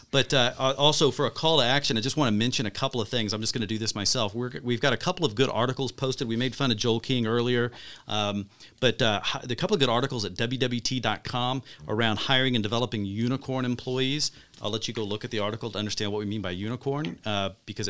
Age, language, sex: 40-59, English, male